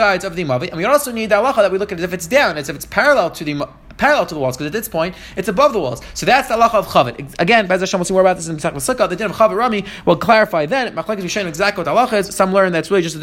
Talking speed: 335 wpm